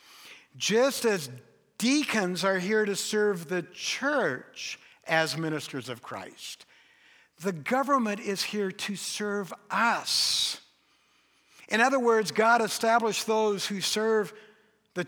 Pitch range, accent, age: 150-205 Hz, American, 60-79